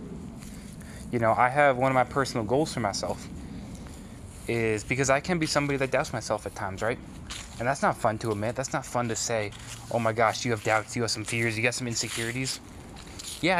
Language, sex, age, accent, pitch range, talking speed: English, male, 20-39, American, 100-130 Hz, 215 wpm